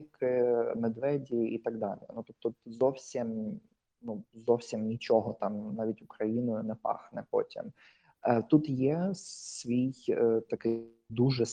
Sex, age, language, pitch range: male, 20-39, Ukrainian, 110-120 Hz